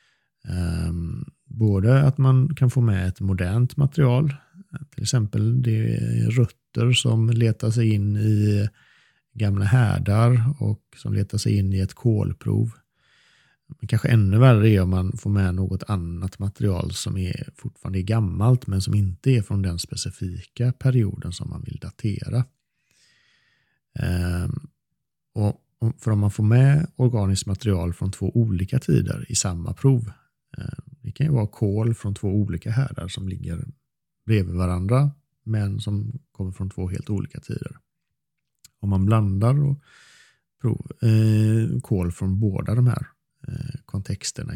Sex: male